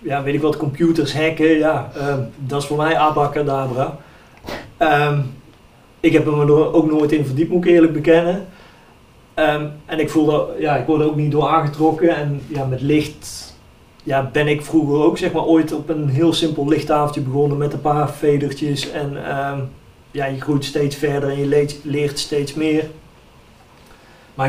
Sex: male